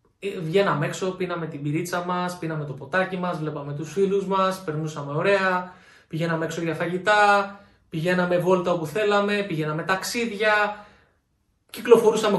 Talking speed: 130 wpm